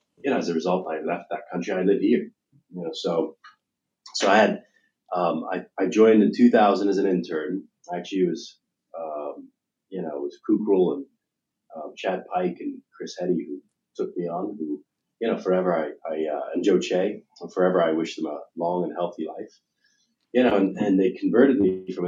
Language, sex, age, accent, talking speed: English, male, 30-49, American, 205 wpm